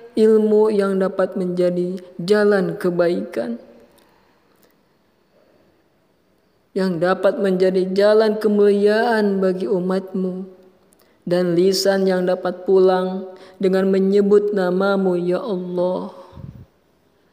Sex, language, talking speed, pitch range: female, Arabic, 80 wpm, 170-205 Hz